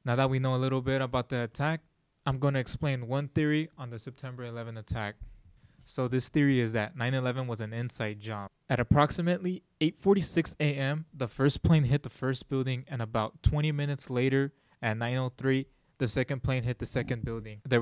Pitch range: 110-135 Hz